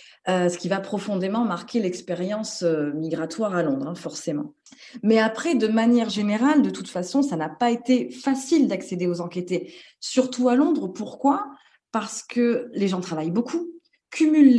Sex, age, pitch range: female, 20-39, 180-240 Hz